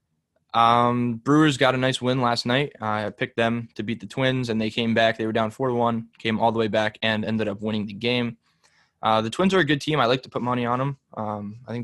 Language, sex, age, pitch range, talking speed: English, male, 10-29, 110-125 Hz, 275 wpm